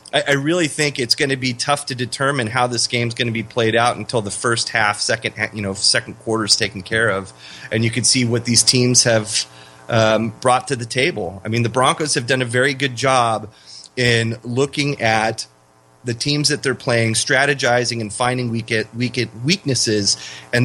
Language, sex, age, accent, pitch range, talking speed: English, male, 30-49, American, 110-135 Hz, 200 wpm